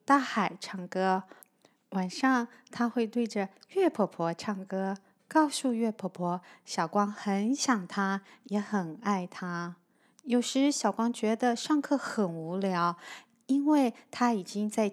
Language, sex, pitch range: Chinese, female, 190-275 Hz